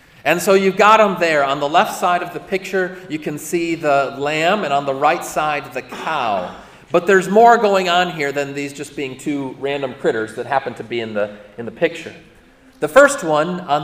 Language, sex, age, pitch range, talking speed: English, male, 40-59, 140-185 Hz, 215 wpm